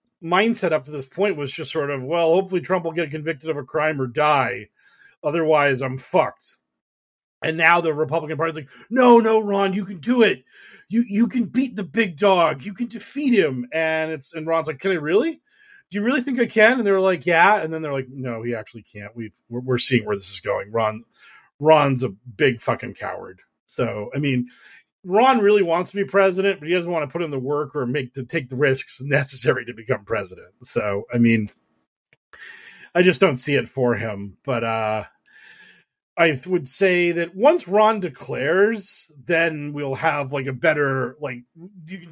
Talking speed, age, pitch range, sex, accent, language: 200 wpm, 40-59, 140-200 Hz, male, American, English